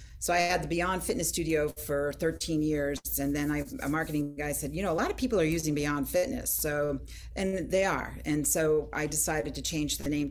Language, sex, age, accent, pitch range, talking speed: English, female, 40-59, American, 145-165 Hz, 225 wpm